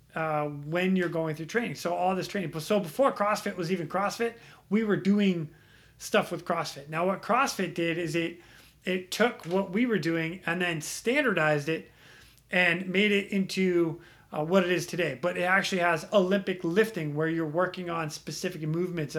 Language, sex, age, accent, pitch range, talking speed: English, male, 30-49, American, 160-195 Hz, 190 wpm